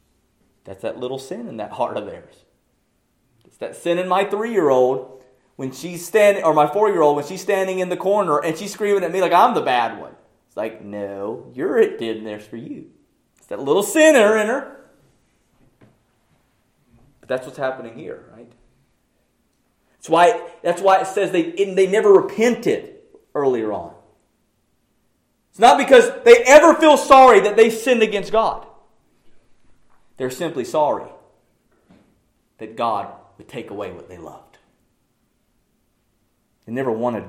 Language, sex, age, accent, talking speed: English, male, 30-49, American, 155 wpm